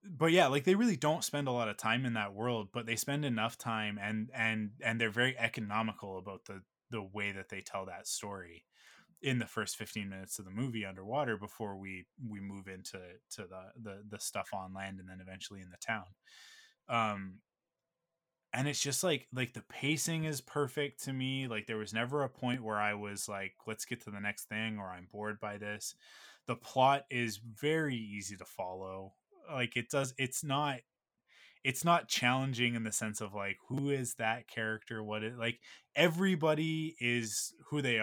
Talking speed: 195 wpm